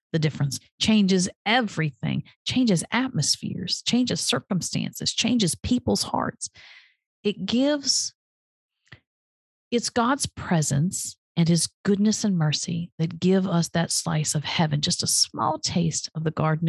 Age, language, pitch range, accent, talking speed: 50-69, English, 155-200 Hz, American, 125 wpm